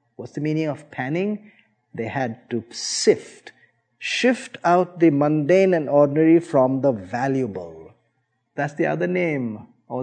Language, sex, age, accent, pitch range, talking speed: Filipino, male, 50-69, Indian, 125-175 Hz, 140 wpm